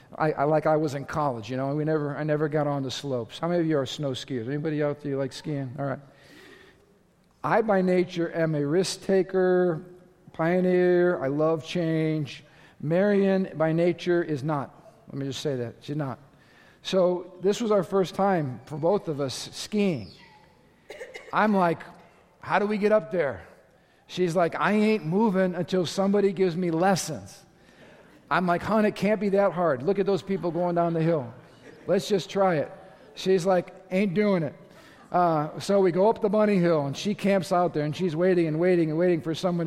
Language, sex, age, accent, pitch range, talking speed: English, male, 50-69, American, 155-190 Hz, 195 wpm